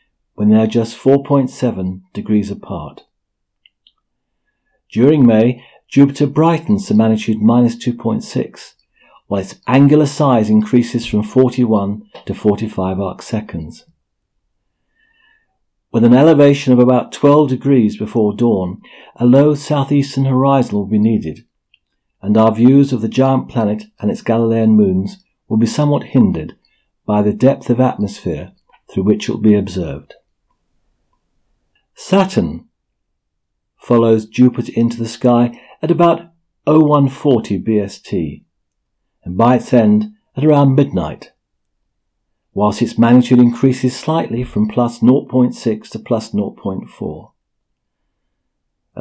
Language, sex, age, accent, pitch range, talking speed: English, male, 50-69, British, 105-135 Hz, 120 wpm